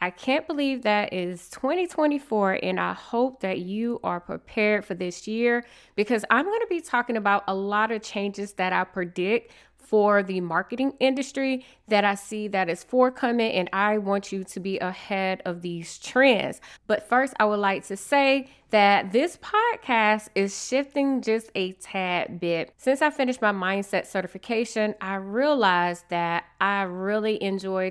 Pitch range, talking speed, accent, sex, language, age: 190-240 Hz, 165 wpm, American, female, English, 20-39